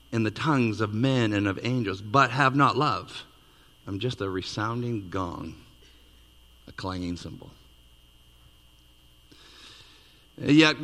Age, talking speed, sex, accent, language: 50-69, 115 wpm, male, American, English